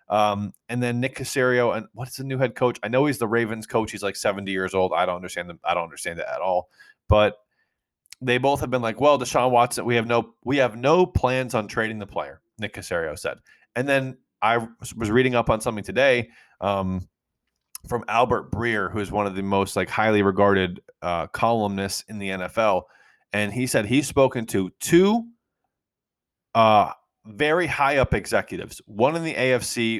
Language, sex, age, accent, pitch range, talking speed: English, male, 30-49, American, 100-130 Hz, 195 wpm